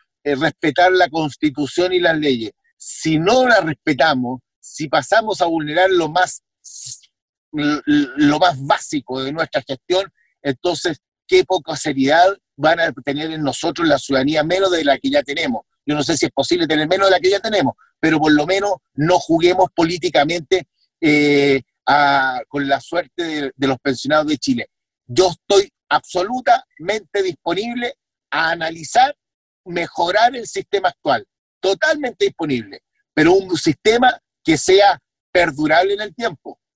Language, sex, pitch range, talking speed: Spanish, male, 145-190 Hz, 150 wpm